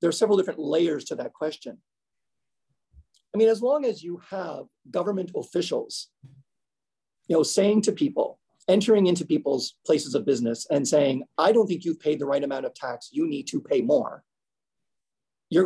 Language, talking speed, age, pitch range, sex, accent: English, 175 wpm, 40-59, 135-180 Hz, male, American